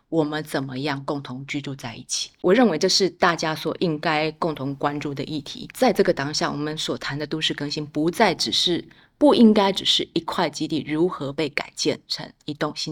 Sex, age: female, 20-39